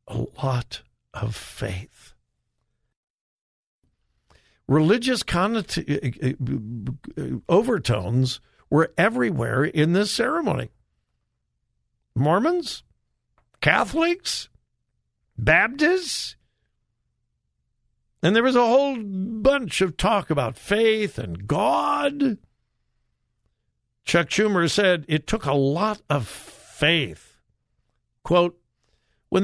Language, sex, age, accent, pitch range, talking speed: English, male, 60-79, American, 125-200 Hz, 75 wpm